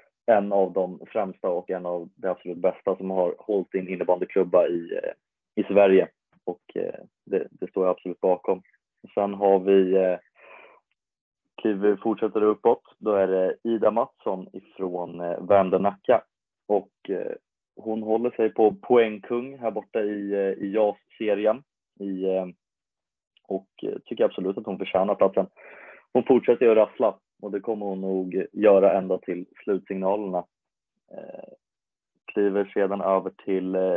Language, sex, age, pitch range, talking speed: Swedish, male, 30-49, 95-110 Hz, 130 wpm